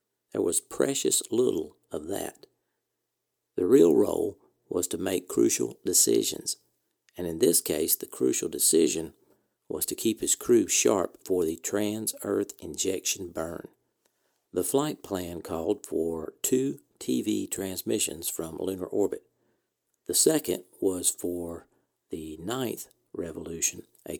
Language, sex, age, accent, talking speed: English, male, 60-79, American, 125 wpm